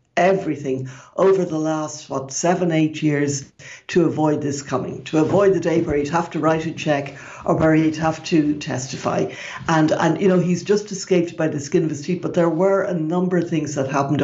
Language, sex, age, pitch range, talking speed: English, female, 60-79, 145-175 Hz, 215 wpm